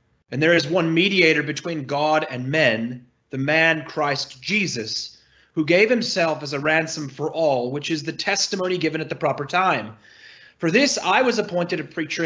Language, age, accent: English, 30-49, American